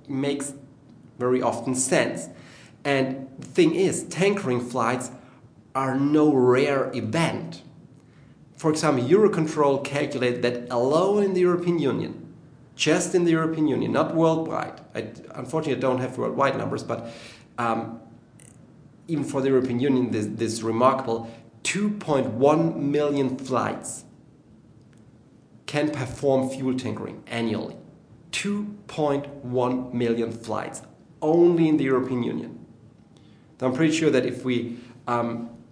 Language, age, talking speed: English, 30-49, 115 wpm